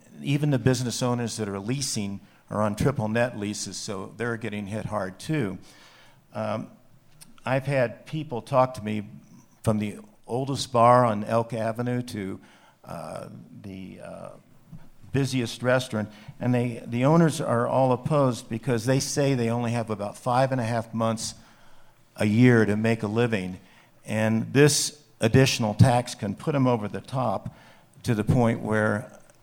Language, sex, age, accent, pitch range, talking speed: English, male, 50-69, American, 110-125 Hz, 155 wpm